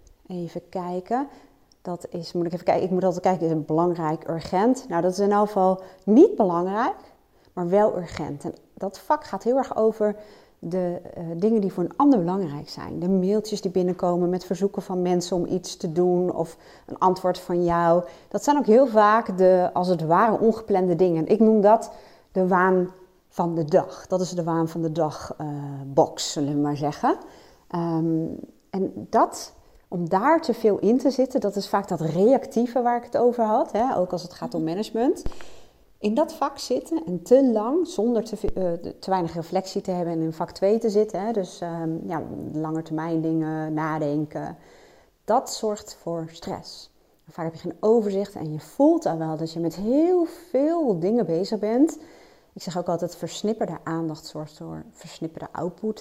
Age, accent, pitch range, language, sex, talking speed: 30-49, Dutch, 165-215 Hz, Dutch, female, 190 wpm